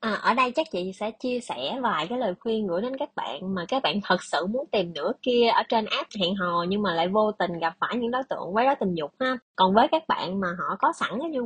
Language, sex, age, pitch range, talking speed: Vietnamese, female, 20-39, 185-250 Hz, 290 wpm